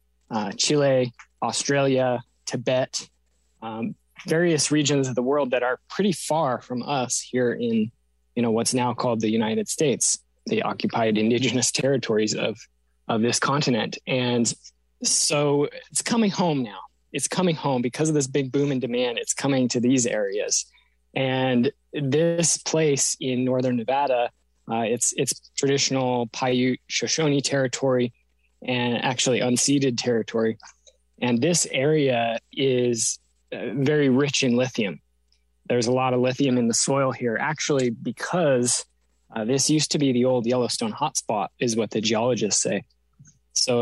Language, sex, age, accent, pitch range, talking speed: English, male, 20-39, American, 115-140 Hz, 145 wpm